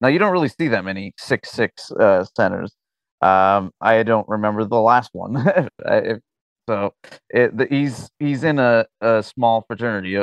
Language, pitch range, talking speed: English, 100-120 Hz, 170 wpm